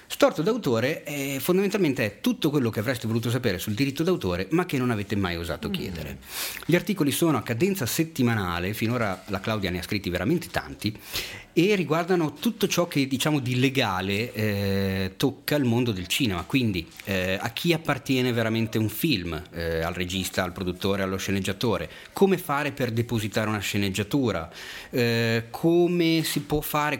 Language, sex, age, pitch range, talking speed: Italian, male, 30-49, 100-135 Hz, 165 wpm